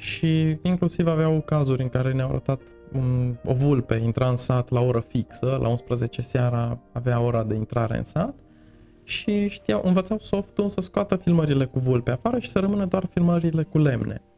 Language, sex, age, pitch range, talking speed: Romanian, male, 20-39, 130-180 Hz, 175 wpm